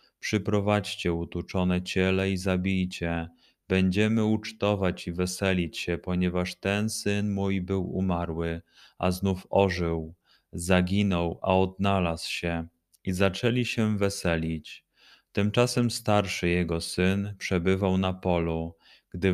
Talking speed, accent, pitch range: 110 wpm, native, 90-100 Hz